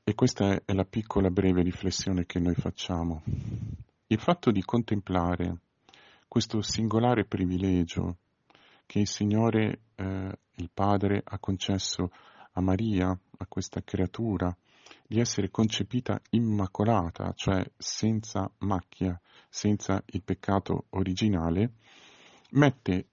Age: 40-59